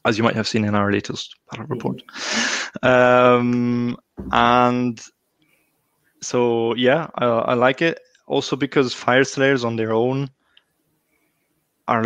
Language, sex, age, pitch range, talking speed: English, male, 20-39, 110-125 Hz, 130 wpm